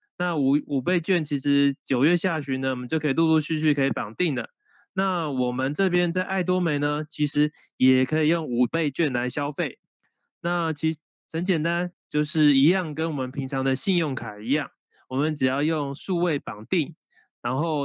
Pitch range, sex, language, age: 135-170 Hz, male, Chinese, 20-39